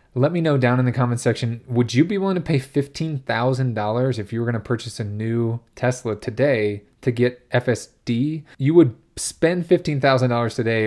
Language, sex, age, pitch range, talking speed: English, male, 20-39, 115-135 Hz, 175 wpm